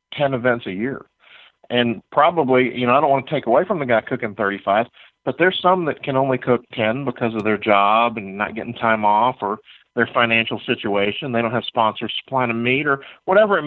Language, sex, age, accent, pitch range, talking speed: English, male, 50-69, American, 110-135 Hz, 220 wpm